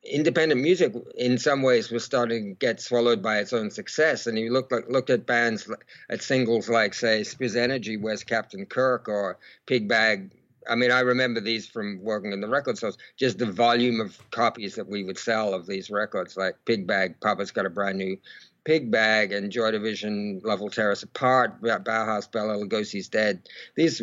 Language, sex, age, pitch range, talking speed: English, male, 50-69, 105-120 Hz, 190 wpm